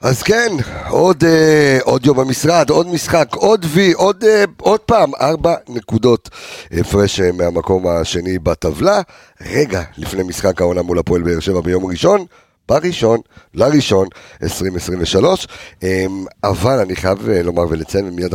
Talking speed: 125 wpm